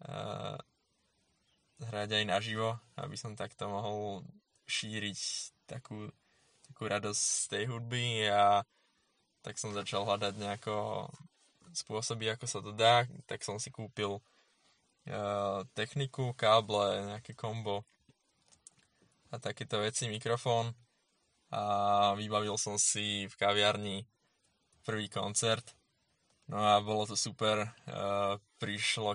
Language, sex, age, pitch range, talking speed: Slovak, male, 10-29, 100-115 Hz, 110 wpm